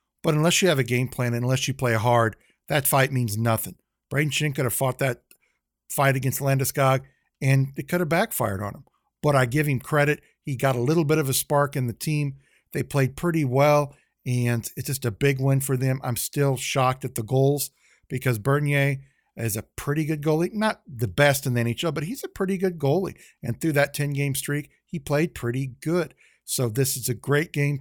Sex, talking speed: male, 215 wpm